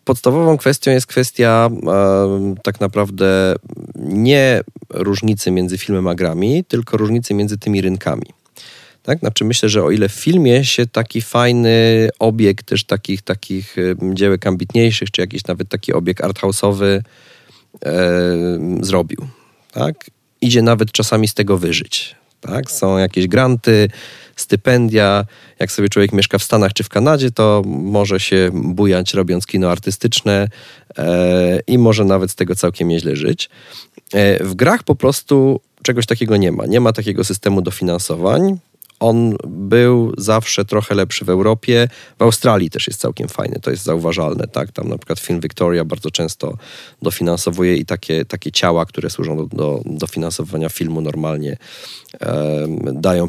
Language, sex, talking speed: Polish, male, 150 wpm